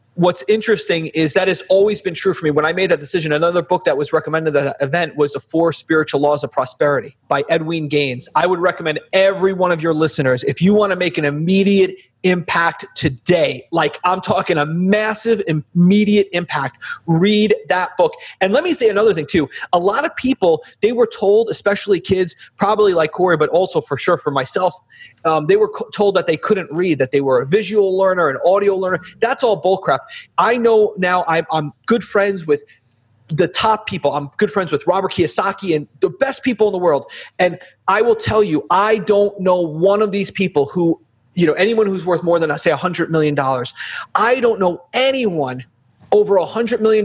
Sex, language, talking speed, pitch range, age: male, English, 210 wpm, 165-215 Hz, 30-49